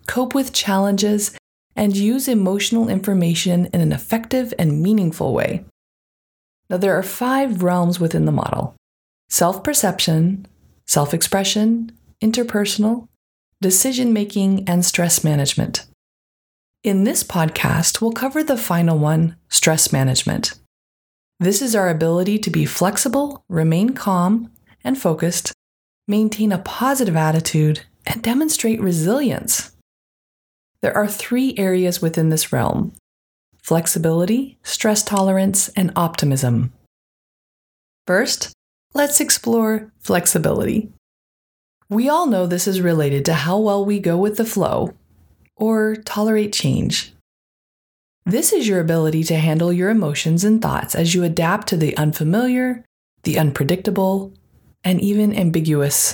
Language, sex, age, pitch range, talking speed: English, female, 30-49, 165-215 Hz, 120 wpm